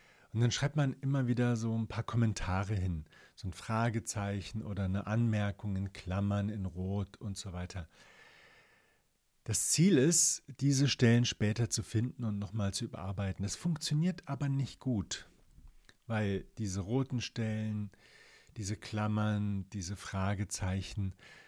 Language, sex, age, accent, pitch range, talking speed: German, male, 40-59, German, 105-135 Hz, 135 wpm